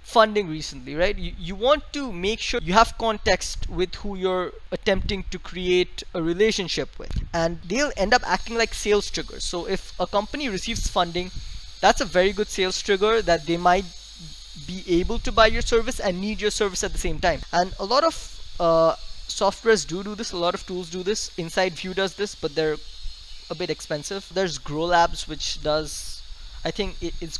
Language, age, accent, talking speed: English, 20-39, Indian, 195 wpm